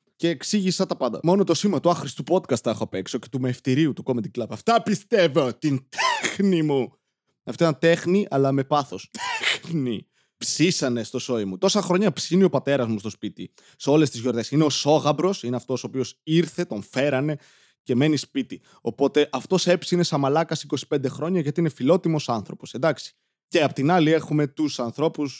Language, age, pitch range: Greek, 20-39, 135-180 Hz